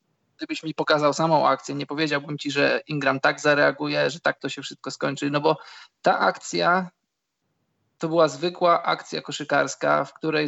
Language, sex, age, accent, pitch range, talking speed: Polish, male, 20-39, native, 145-170 Hz, 165 wpm